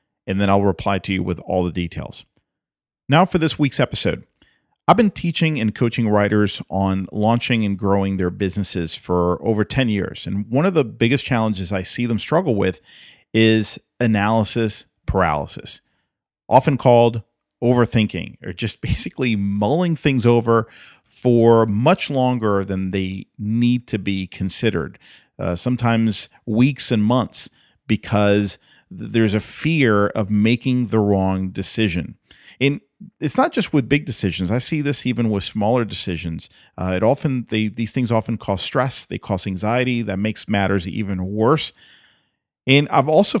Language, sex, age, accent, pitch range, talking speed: English, male, 40-59, American, 95-125 Hz, 155 wpm